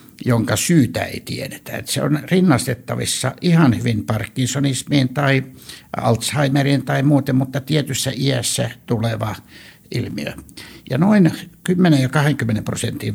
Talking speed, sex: 120 wpm, male